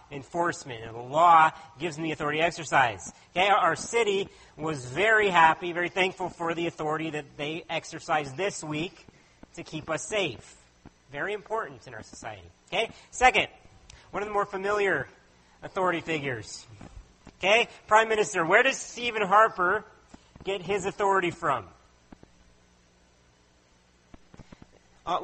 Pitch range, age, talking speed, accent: 140-205 Hz, 40-59, 135 wpm, American